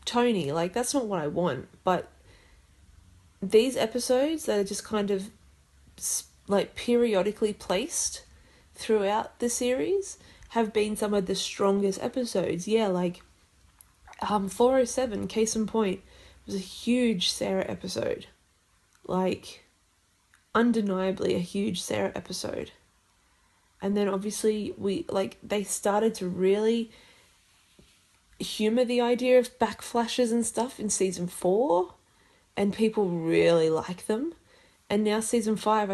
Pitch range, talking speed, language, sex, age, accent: 185-225 Hz, 125 wpm, English, female, 20-39, Australian